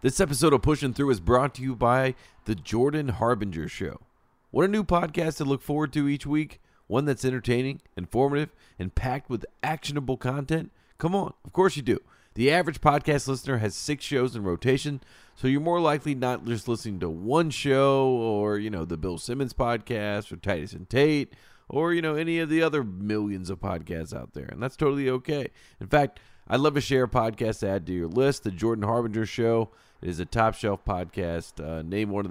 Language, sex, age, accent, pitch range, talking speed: English, male, 40-59, American, 95-140 Hz, 205 wpm